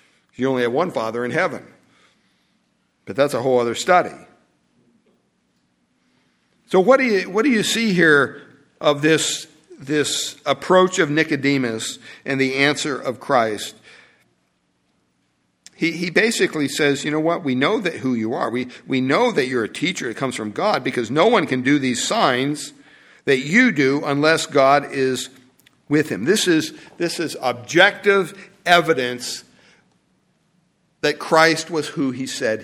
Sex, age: male, 60-79